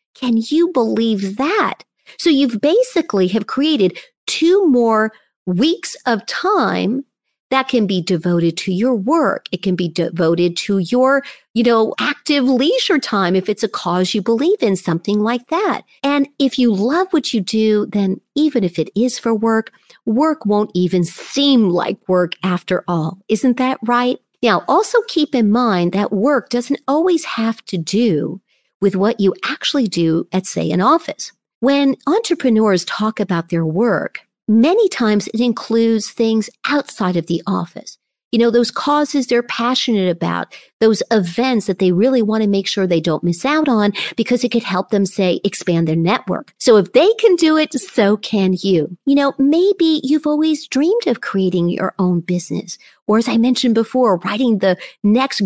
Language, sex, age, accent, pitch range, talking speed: English, female, 50-69, American, 195-280 Hz, 175 wpm